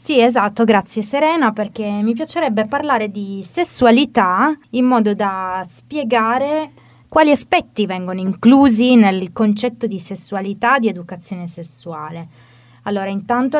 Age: 20-39